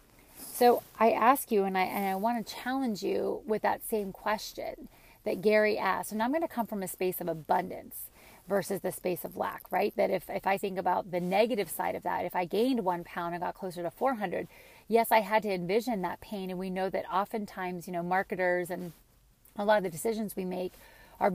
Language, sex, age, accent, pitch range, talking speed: English, female, 30-49, American, 185-230 Hz, 230 wpm